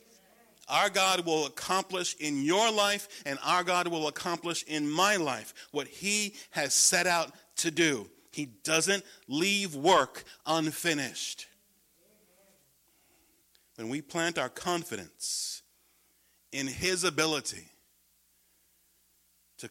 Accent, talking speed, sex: American, 110 wpm, male